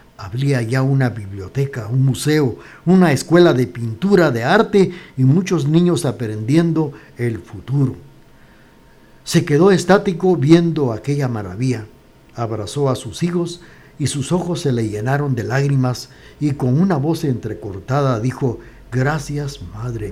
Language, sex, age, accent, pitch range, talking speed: Spanish, male, 60-79, Mexican, 115-155 Hz, 130 wpm